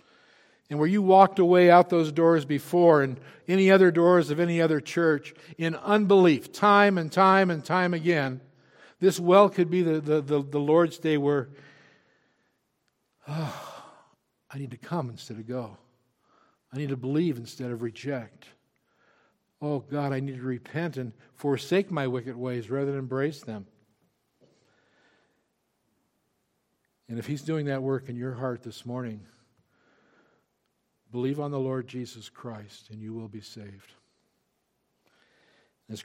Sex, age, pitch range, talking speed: male, 60-79, 120-155 Hz, 145 wpm